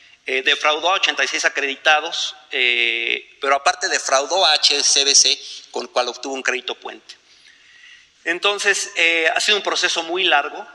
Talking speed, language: 145 wpm, Spanish